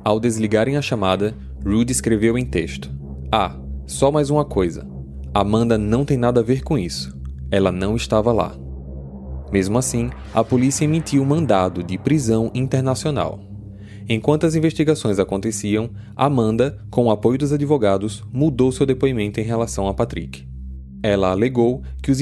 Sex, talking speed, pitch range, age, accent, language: male, 150 wpm, 100-135 Hz, 20-39, Brazilian, Portuguese